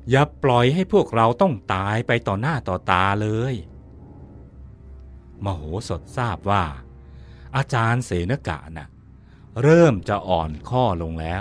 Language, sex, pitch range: Thai, male, 85-135 Hz